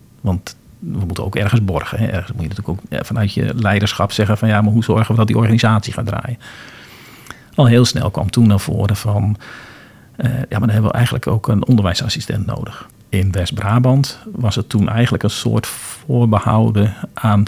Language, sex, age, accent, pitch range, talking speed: Dutch, male, 50-69, Dutch, 100-120 Hz, 190 wpm